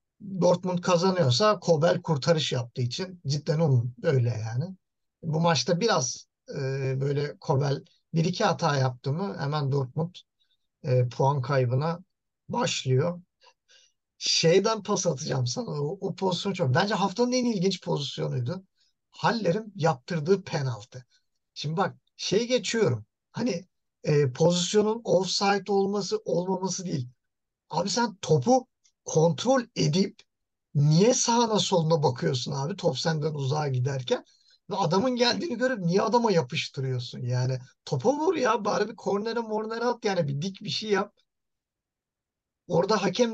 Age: 50-69